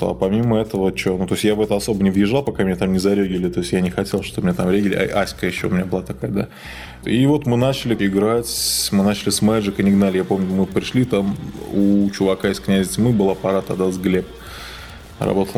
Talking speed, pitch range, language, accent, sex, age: 235 wpm, 95-105 Hz, Russian, native, male, 20-39